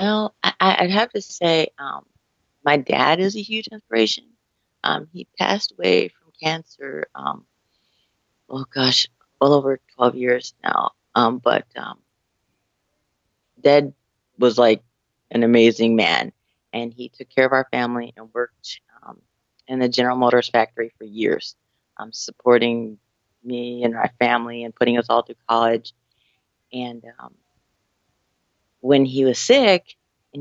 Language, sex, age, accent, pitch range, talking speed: English, female, 30-49, American, 120-145 Hz, 140 wpm